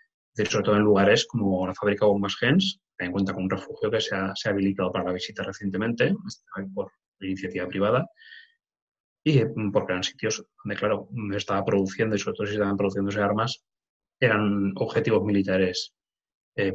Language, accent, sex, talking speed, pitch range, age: Spanish, Spanish, male, 170 wpm, 100-120 Hz, 20-39